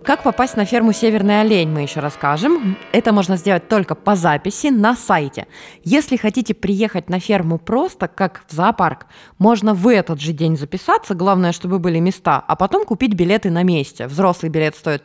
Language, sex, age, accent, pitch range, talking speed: Russian, female, 20-39, native, 170-225 Hz, 180 wpm